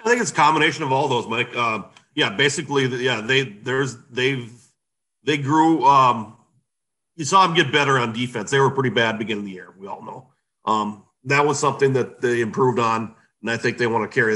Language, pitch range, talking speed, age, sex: English, 110-135 Hz, 215 wpm, 40-59, male